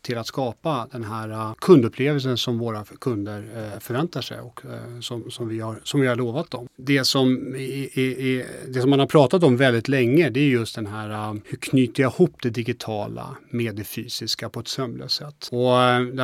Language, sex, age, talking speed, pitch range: Swedish, male, 30-49, 220 wpm, 120-135 Hz